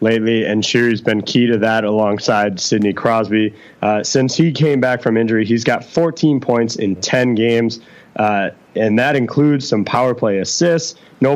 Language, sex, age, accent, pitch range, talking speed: English, male, 20-39, American, 110-130 Hz, 175 wpm